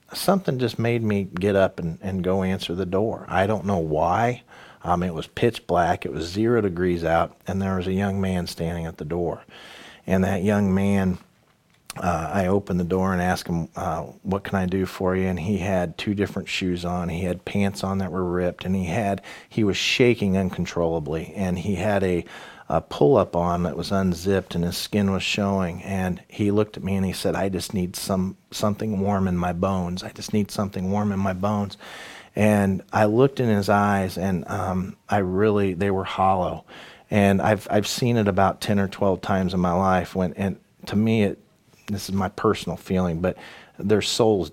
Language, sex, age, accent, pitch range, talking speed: English, male, 40-59, American, 90-100 Hz, 205 wpm